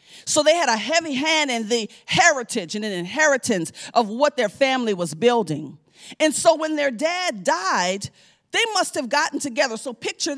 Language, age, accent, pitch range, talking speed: English, 40-59, American, 210-295 Hz, 180 wpm